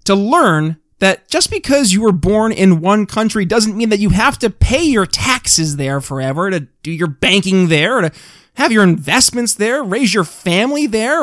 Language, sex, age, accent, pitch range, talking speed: English, male, 20-39, American, 160-225 Hz, 200 wpm